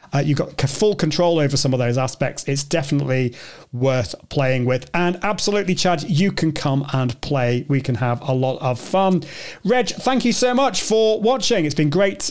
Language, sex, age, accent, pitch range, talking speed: English, male, 30-49, British, 140-210 Hz, 195 wpm